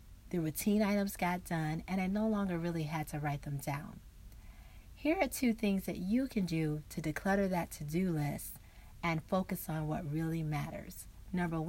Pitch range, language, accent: 155-195 Hz, English, American